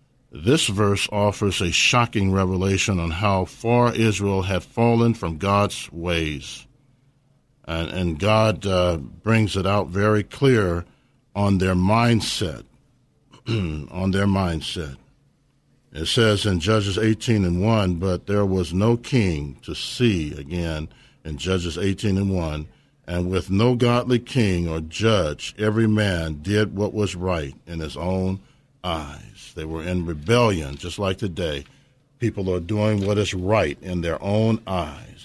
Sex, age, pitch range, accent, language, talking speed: male, 50-69, 90-125 Hz, American, English, 145 wpm